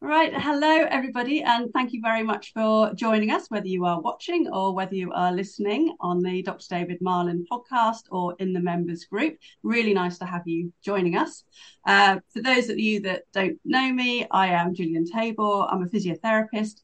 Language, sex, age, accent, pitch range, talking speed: English, female, 40-59, British, 175-220 Hz, 190 wpm